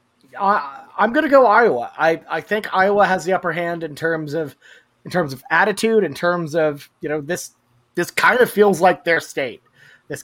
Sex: male